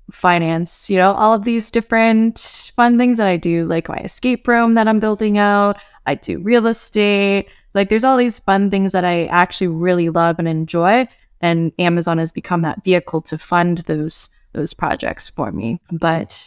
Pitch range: 165-200 Hz